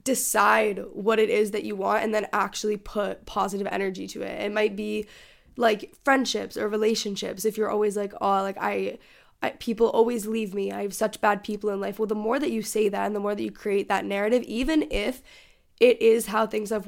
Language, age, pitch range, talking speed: English, 10-29, 200-225 Hz, 225 wpm